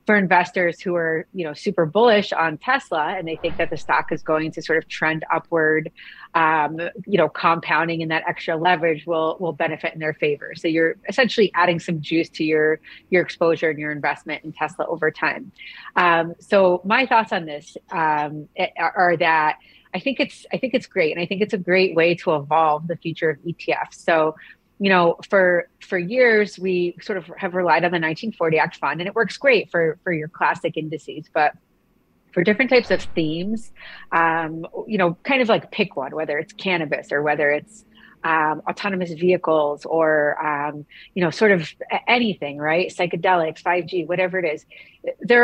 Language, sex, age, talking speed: English, female, 30-49, 190 wpm